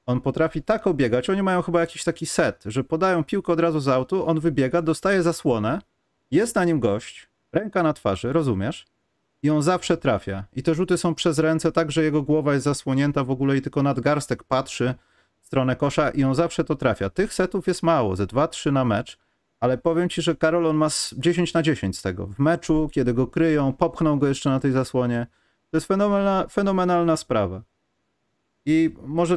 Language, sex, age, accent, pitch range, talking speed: Polish, male, 30-49, native, 110-160 Hz, 200 wpm